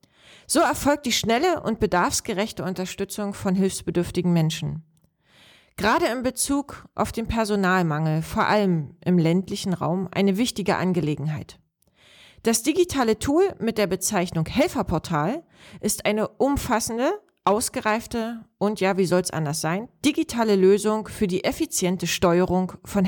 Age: 40-59